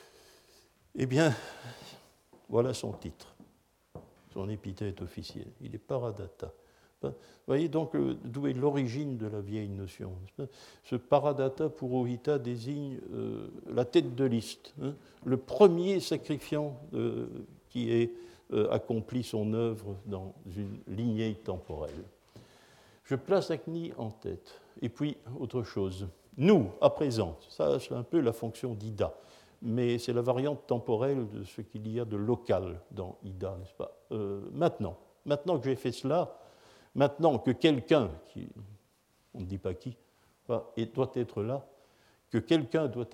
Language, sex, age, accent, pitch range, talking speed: French, male, 60-79, French, 105-140 Hz, 145 wpm